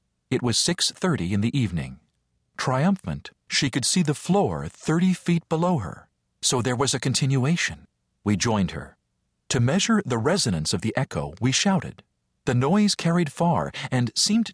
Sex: male